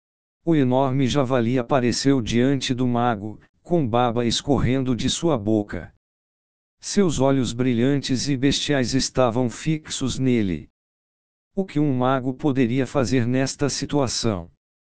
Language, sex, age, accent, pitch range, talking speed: Portuguese, male, 60-79, Brazilian, 120-145 Hz, 115 wpm